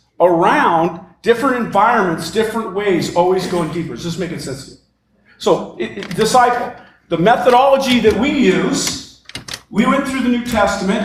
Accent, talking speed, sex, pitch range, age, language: American, 160 wpm, male, 185-250 Hz, 50-69, English